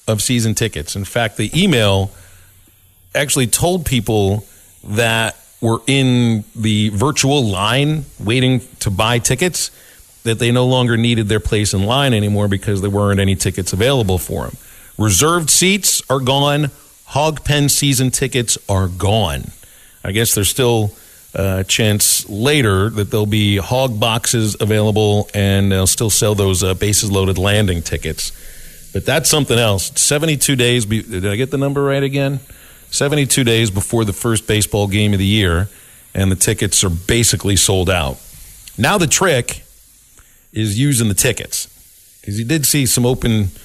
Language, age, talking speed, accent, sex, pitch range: English, 40-59, 155 wpm, American, male, 100-125 Hz